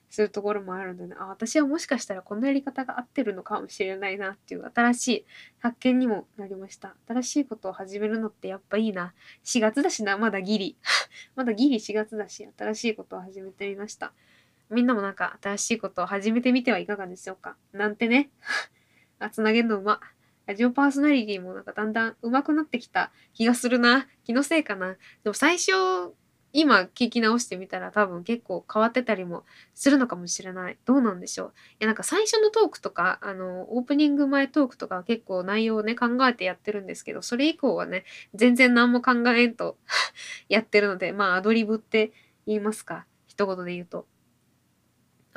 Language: Japanese